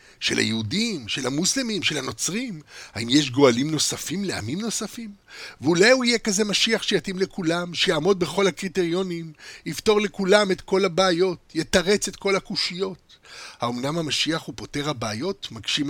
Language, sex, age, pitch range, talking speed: Hebrew, male, 50-69, 150-215 Hz, 140 wpm